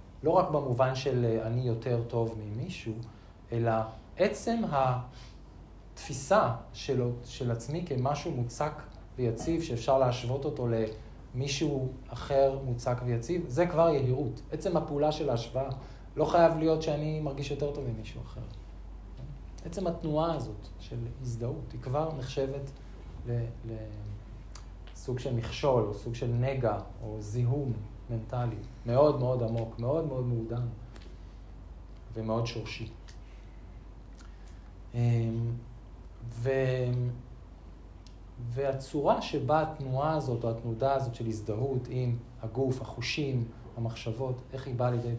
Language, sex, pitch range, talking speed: Hebrew, male, 110-135 Hz, 110 wpm